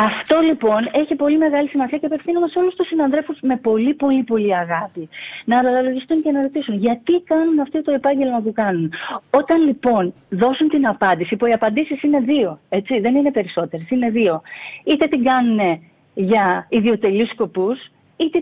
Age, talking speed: 30-49, 170 wpm